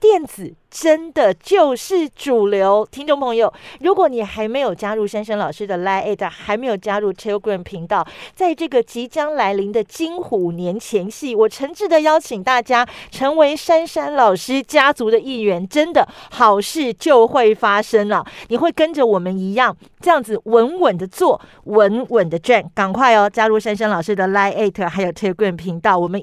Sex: female